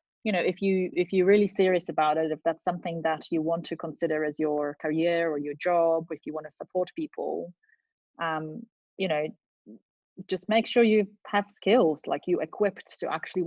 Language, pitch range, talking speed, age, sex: English, 150-175 Hz, 195 wpm, 30-49, female